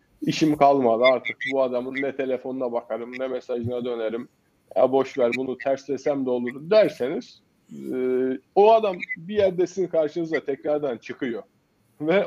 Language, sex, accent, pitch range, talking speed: Turkish, male, native, 125-150 Hz, 130 wpm